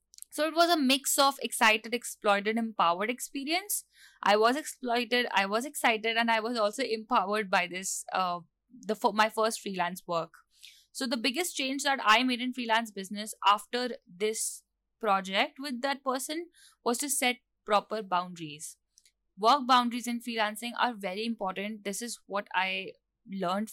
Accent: Indian